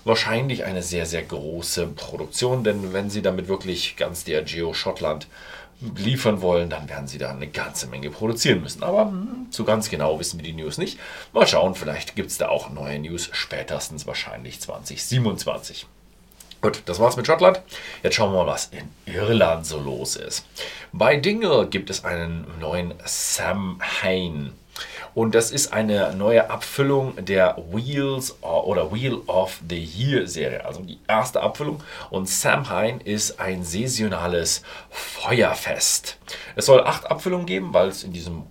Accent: German